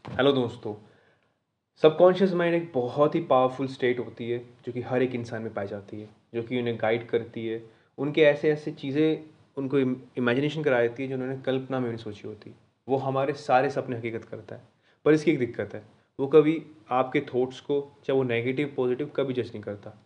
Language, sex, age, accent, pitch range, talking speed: Hindi, male, 20-39, native, 115-145 Hz, 200 wpm